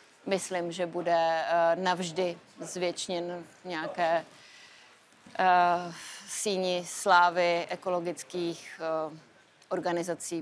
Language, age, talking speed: Czech, 30-49, 60 wpm